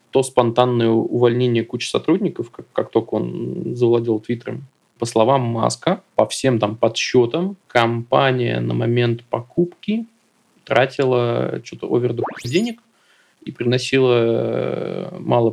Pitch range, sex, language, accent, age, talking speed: 115-135 Hz, male, Russian, native, 20-39, 110 wpm